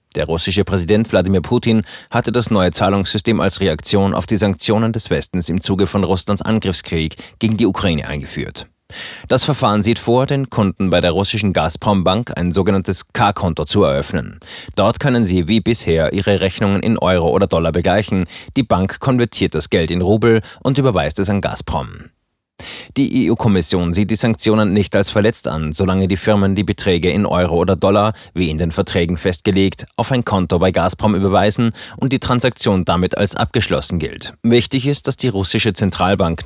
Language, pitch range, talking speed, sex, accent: German, 90-110 Hz, 175 wpm, male, German